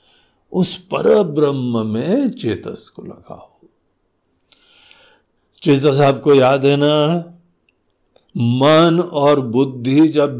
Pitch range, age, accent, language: 140-175 Hz, 60-79, native, Hindi